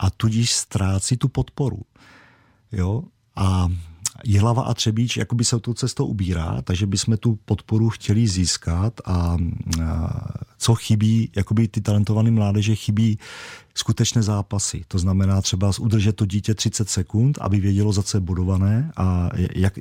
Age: 40-59